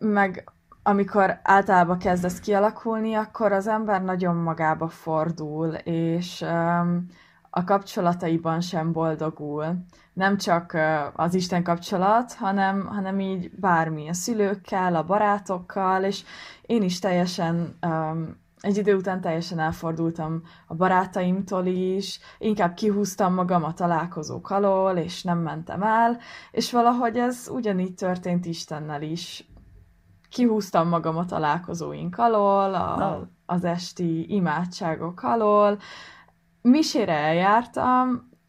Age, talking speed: 20-39, 110 wpm